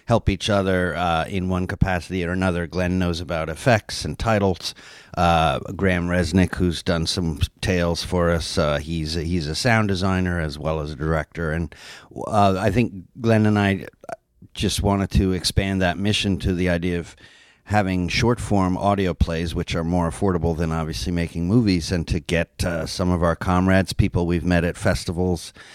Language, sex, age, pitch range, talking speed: English, male, 50-69, 80-95 Hz, 180 wpm